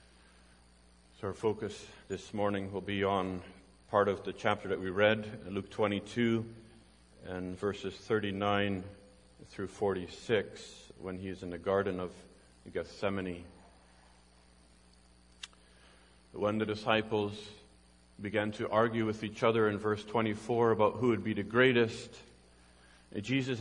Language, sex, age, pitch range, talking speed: English, male, 40-59, 90-120 Hz, 120 wpm